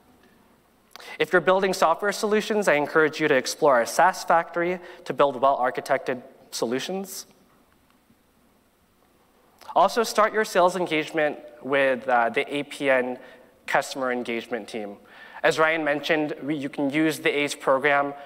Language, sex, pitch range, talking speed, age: English, male, 130-165 Hz, 130 wpm, 20-39